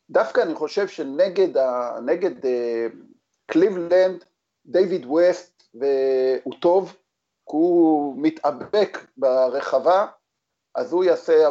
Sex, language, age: male, Hebrew, 50-69